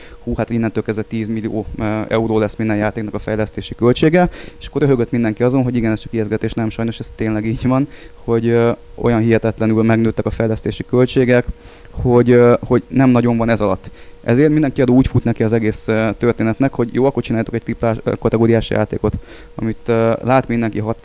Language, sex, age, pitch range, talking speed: Hungarian, male, 20-39, 110-120 Hz, 175 wpm